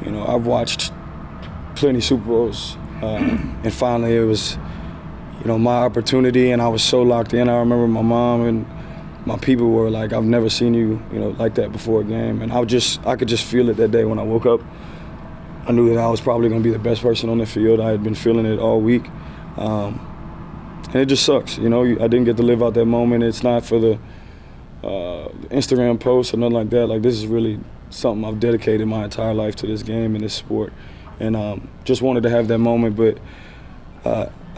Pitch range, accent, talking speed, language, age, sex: 110-120 Hz, American, 230 wpm, English, 20-39, male